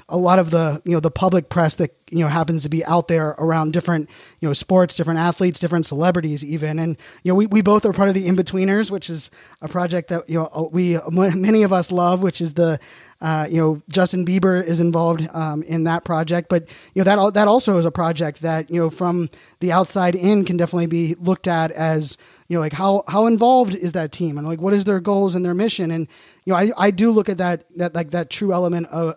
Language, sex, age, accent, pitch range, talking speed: English, male, 20-39, American, 165-190 Hz, 245 wpm